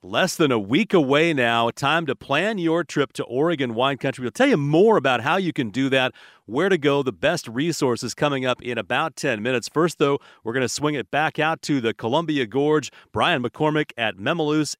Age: 40-59